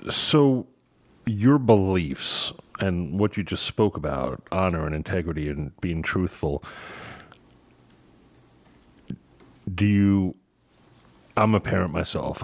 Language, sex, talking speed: English, male, 100 wpm